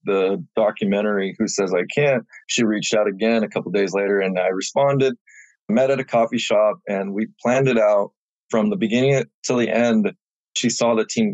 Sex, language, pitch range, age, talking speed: male, English, 105-115 Hz, 20-39, 200 wpm